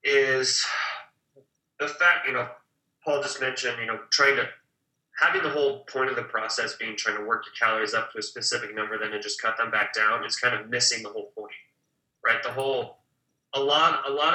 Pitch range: 115-140 Hz